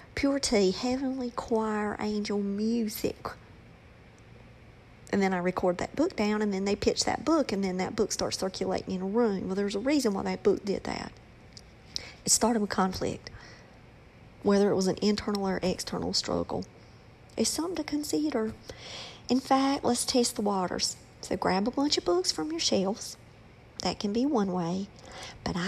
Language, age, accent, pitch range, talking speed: English, 50-69, American, 195-255 Hz, 175 wpm